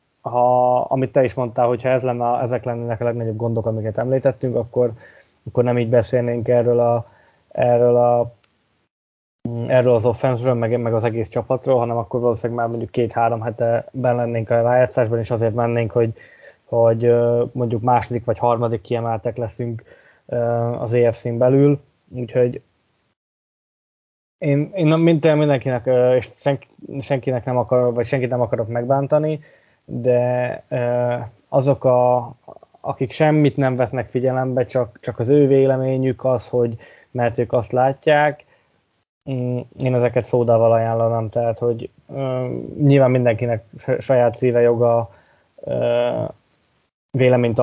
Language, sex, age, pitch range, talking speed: Hungarian, male, 20-39, 120-130 Hz, 135 wpm